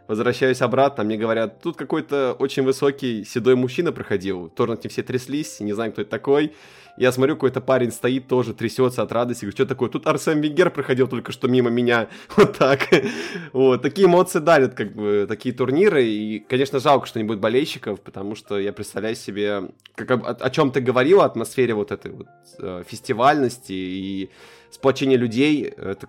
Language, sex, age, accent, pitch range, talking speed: Russian, male, 20-39, native, 110-140 Hz, 180 wpm